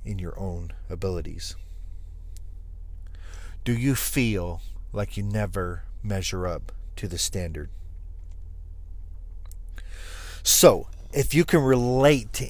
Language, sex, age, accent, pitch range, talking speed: English, male, 40-59, American, 80-115 Hz, 100 wpm